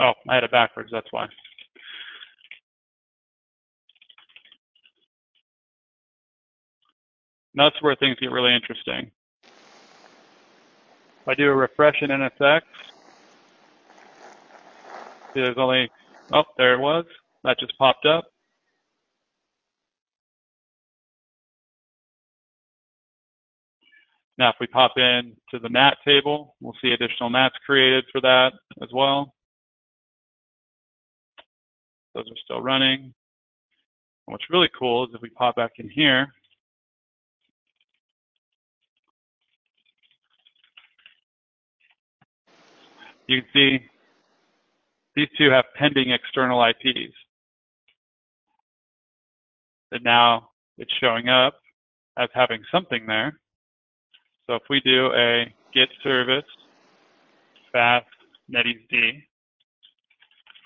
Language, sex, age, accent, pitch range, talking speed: English, male, 30-49, American, 115-135 Hz, 90 wpm